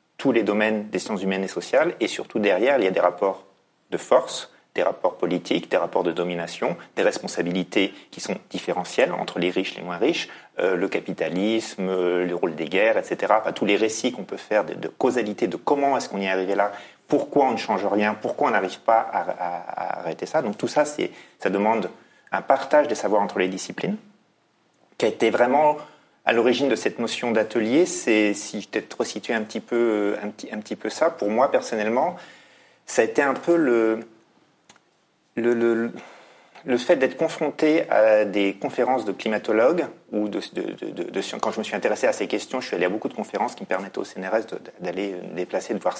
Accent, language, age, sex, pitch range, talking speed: French, French, 40-59, male, 100-130 Hz, 220 wpm